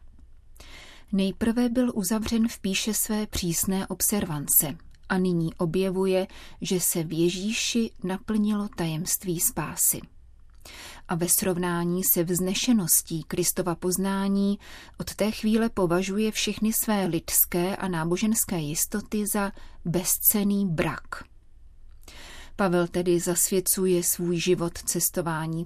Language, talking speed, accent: Czech, 105 wpm, native